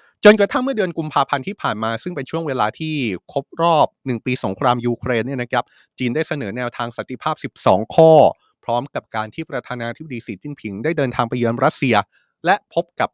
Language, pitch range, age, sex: Thai, 125-185 Hz, 30-49, male